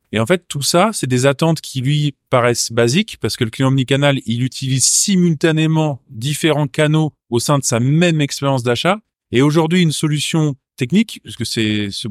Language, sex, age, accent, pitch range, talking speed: French, male, 20-39, French, 120-155 Hz, 185 wpm